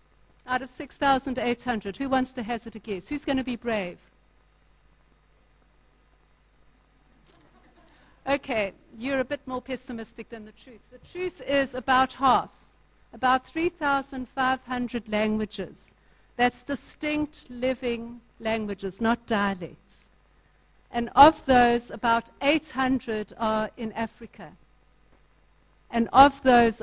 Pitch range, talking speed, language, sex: 220-280 Hz, 105 wpm, English, female